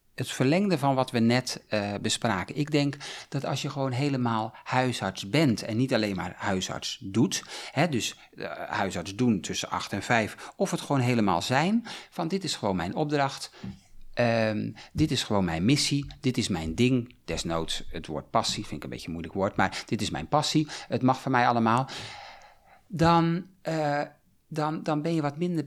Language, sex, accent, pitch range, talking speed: Dutch, male, Dutch, 105-150 Hz, 190 wpm